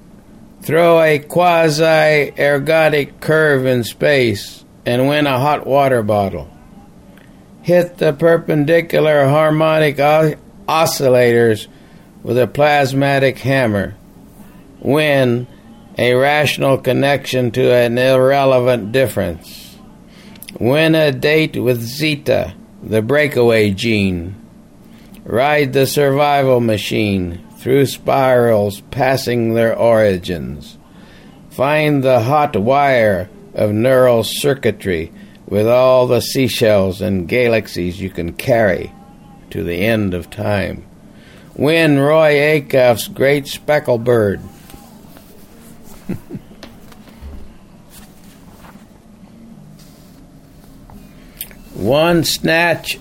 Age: 60-79